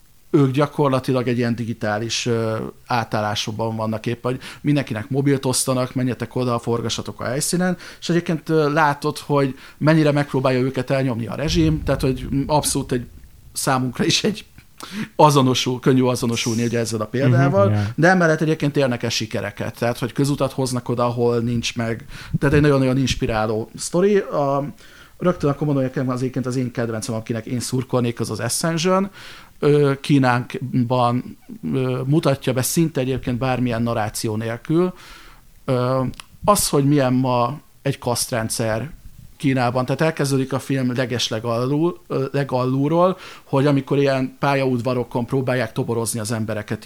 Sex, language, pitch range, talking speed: male, Hungarian, 120-145 Hz, 130 wpm